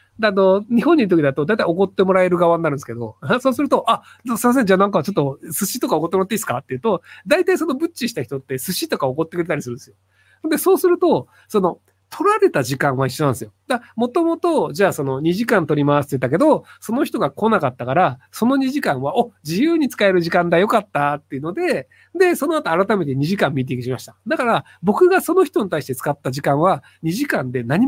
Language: Japanese